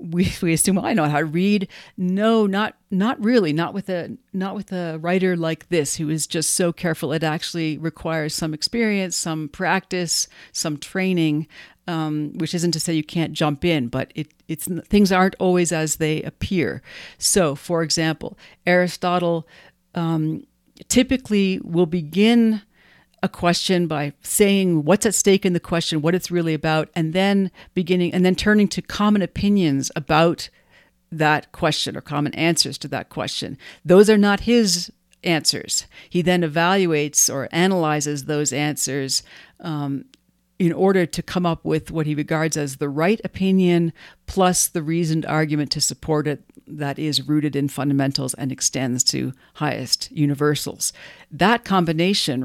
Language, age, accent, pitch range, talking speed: English, 50-69, American, 150-185 Hz, 160 wpm